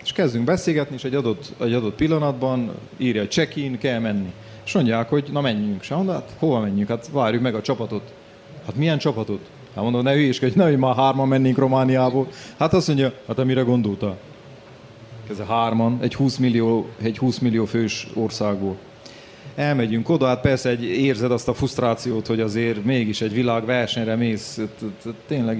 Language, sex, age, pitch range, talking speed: Hungarian, male, 30-49, 110-135 Hz, 170 wpm